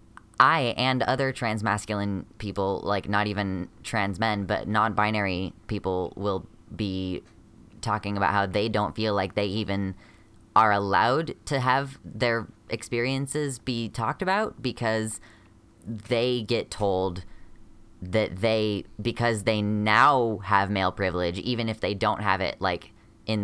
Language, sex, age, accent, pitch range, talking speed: English, female, 10-29, American, 95-110 Hz, 135 wpm